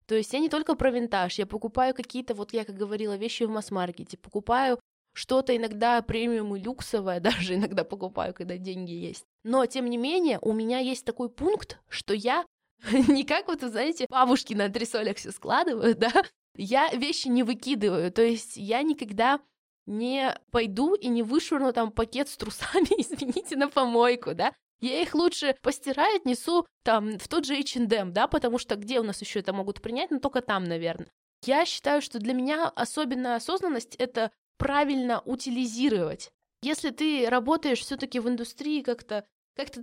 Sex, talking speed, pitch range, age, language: female, 175 wpm, 230-280 Hz, 20-39, Russian